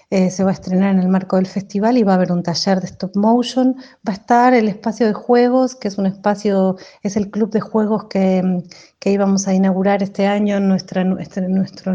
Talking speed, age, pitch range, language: 225 wpm, 30-49, 190-215 Hz, Spanish